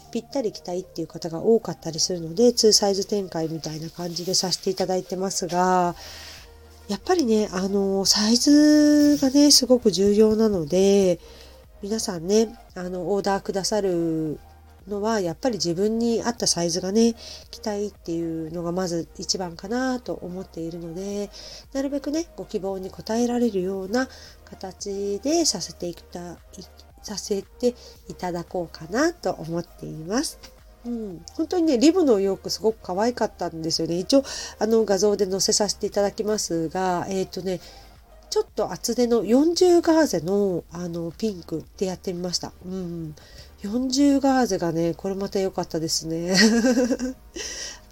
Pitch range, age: 170-220 Hz, 40-59